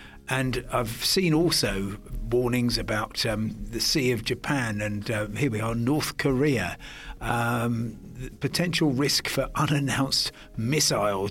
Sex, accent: male, British